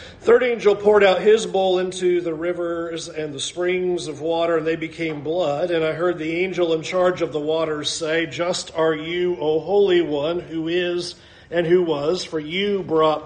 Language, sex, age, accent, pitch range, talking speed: English, male, 40-59, American, 155-185 Hz, 200 wpm